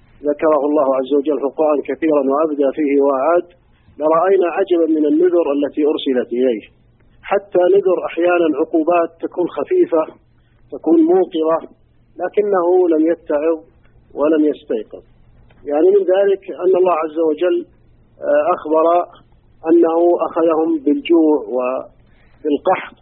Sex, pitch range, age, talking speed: male, 150-180 Hz, 50-69, 105 wpm